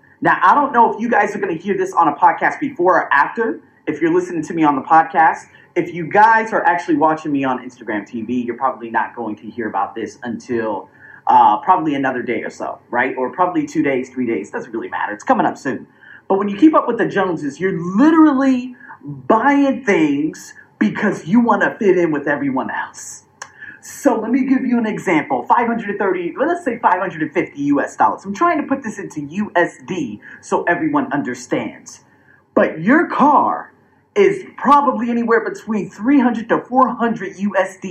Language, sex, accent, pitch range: English, male, American, 170-270 Hz